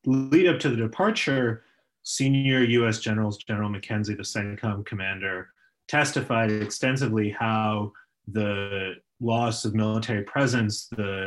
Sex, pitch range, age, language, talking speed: male, 100-120 Hz, 30-49, English, 115 wpm